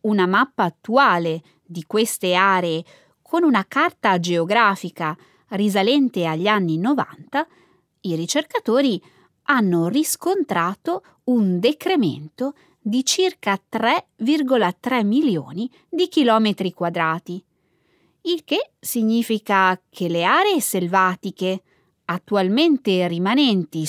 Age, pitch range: 20-39, 175-270 Hz